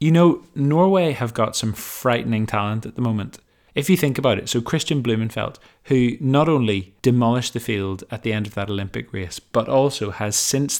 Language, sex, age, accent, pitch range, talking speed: English, male, 20-39, British, 110-140 Hz, 200 wpm